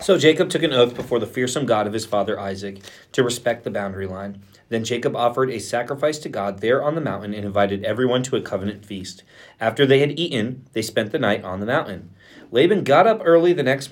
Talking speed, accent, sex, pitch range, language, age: 230 wpm, American, male, 95-130 Hz, English, 30-49